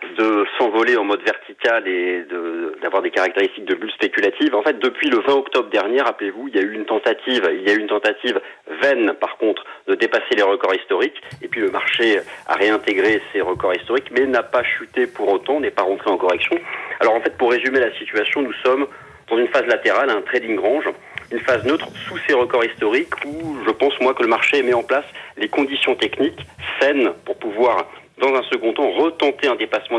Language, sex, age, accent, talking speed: French, male, 40-59, French, 215 wpm